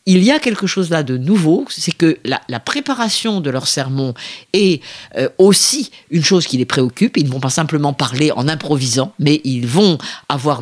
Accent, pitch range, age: French, 130-190 Hz, 50-69